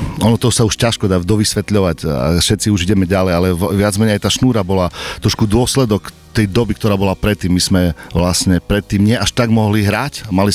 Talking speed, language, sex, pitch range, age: 210 wpm, Slovak, male, 95-115 Hz, 40-59